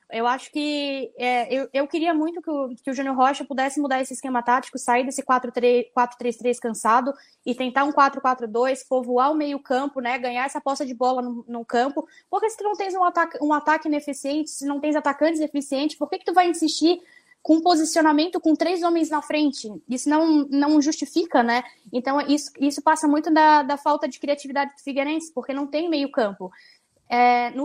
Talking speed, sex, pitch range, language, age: 195 wpm, female, 255-310 Hz, Portuguese, 10-29